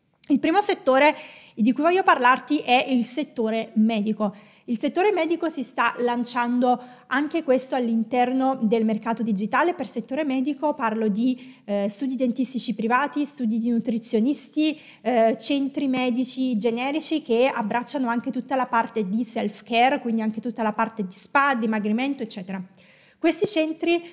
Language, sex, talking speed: Italian, female, 145 wpm